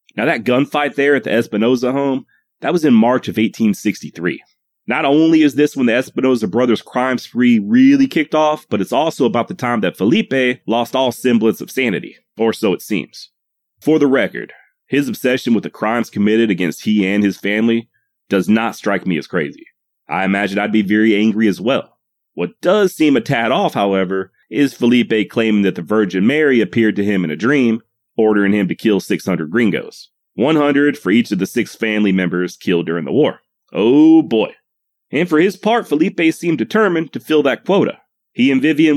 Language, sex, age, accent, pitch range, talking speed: English, male, 30-49, American, 110-155 Hz, 195 wpm